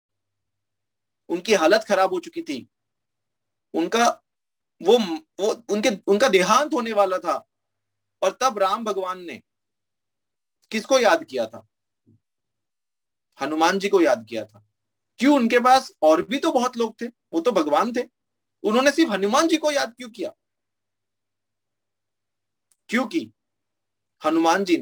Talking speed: 130 wpm